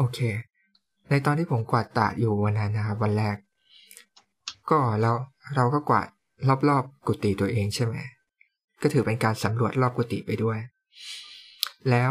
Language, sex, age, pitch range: Thai, male, 20-39, 105-130 Hz